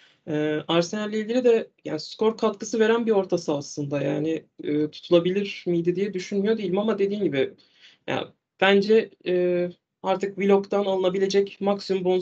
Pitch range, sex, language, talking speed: 155-195 Hz, male, Turkish, 135 wpm